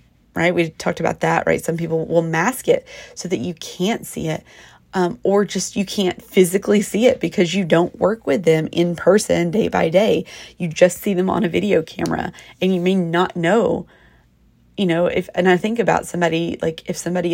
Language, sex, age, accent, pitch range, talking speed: English, female, 30-49, American, 170-210 Hz, 210 wpm